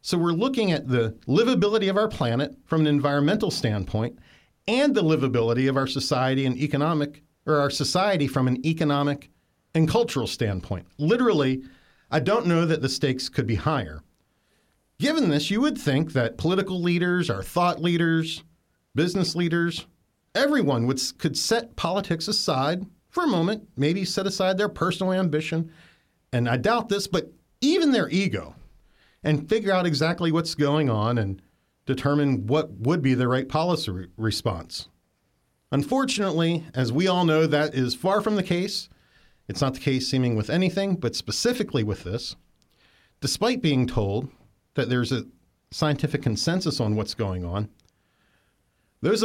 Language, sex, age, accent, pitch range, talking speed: English, male, 40-59, American, 125-175 Hz, 155 wpm